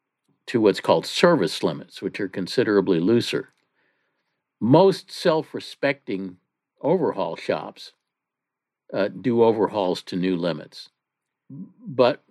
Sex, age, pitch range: male, 60-79, 90-115 Hz